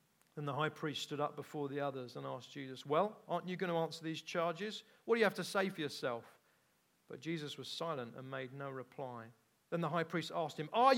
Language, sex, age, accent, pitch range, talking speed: English, male, 40-59, British, 140-205 Hz, 235 wpm